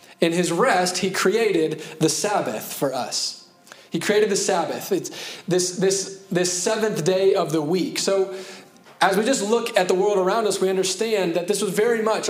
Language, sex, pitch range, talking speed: English, male, 175-205 Hz, 190 wpm